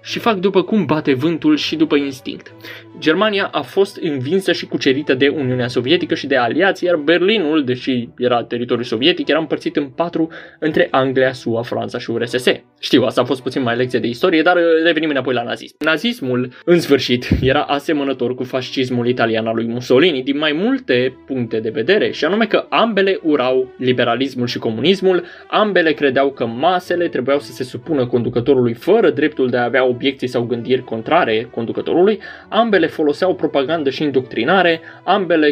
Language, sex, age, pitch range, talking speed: Romanian, male, 20-39, 125-160 Hz, 170 wpm